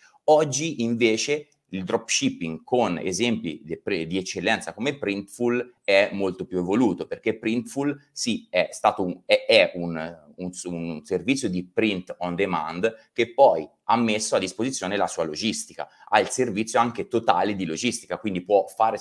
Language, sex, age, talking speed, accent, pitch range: Italian, male, 30-49, 160 wpm, native, 90-120 Hz